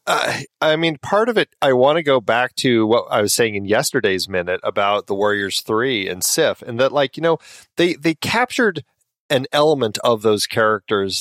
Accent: American